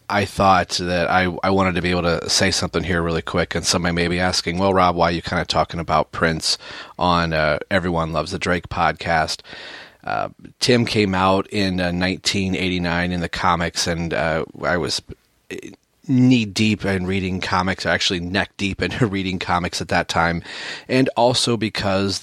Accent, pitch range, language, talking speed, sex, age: American, 85-95 Hz, English, 180 wpm, male, 30-49